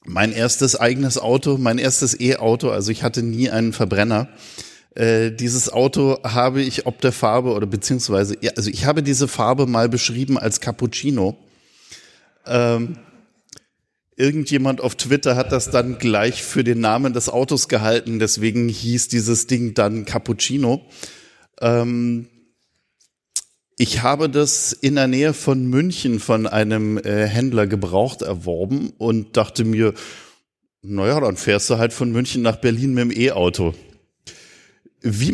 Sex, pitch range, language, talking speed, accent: male, 110-130 Hz, German, 140 wpm, German